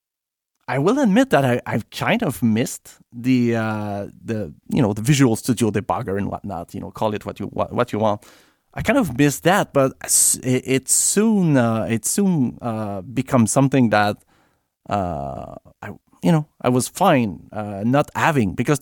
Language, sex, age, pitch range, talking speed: English, male, 30-49, 105-140 Hz, 180 wpm